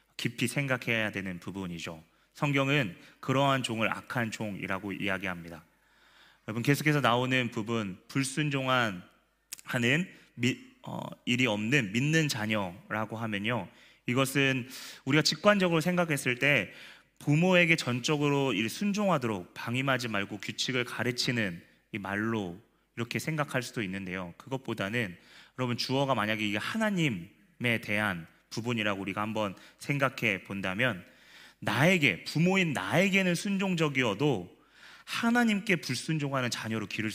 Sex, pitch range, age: male, 105-155 Hz, 30-49